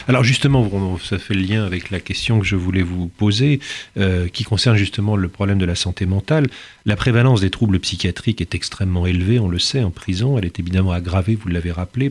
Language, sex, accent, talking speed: French, male, French, 220 wpm